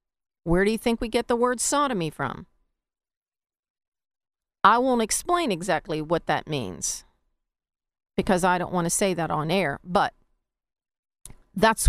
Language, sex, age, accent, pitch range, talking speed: English, female, 40-59, American, 205-260 Hz, 140 wpm